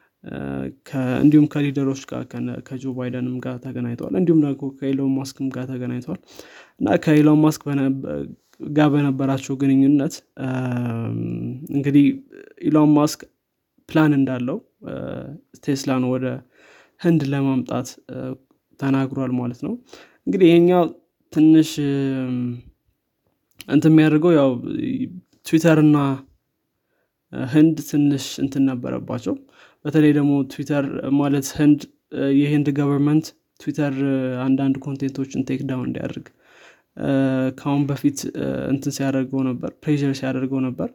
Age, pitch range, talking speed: 20-39, 130-145 Hz, 95 wpm